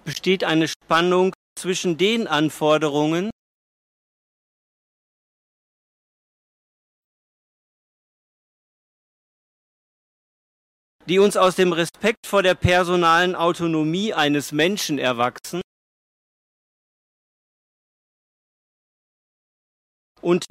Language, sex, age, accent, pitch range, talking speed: Italian, male, 50-69, German, 160-195 Hz, 55 wpm